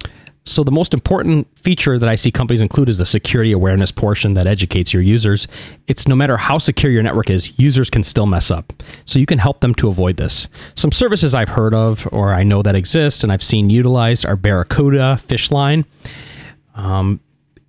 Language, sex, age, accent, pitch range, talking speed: English, male, 30-49, American, 100-140 Hz, 195 wpm